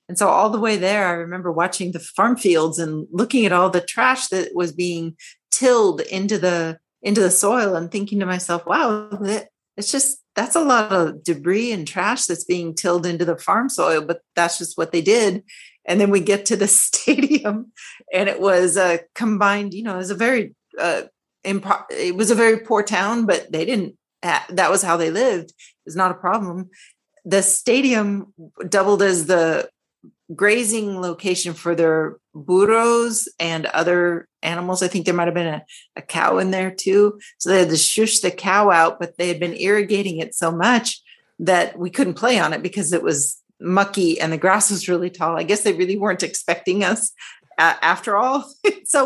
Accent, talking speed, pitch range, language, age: American, 195 wpm, 175-220 Hz, English, 40-59